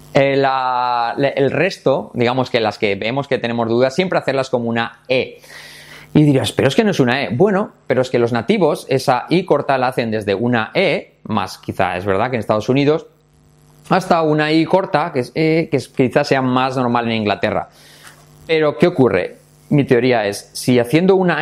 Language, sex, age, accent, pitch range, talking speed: English, male, 30-49, Spanish, 115-150 Hz, 195 wpm